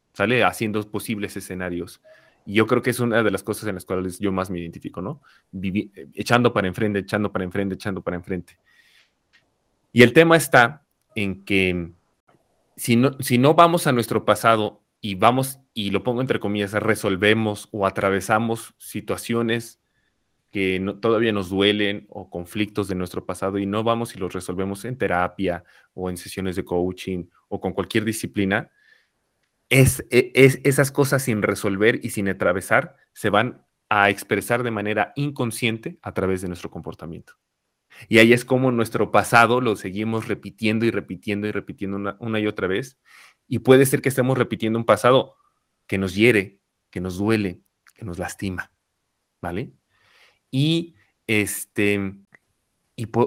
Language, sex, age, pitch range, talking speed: Spanish, male, 30-49, 95-120 Hz, 160 wpm